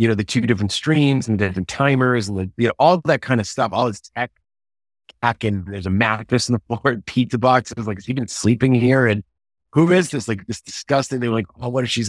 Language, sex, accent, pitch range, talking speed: English, male, American, 105-125 Hz, 265 wpm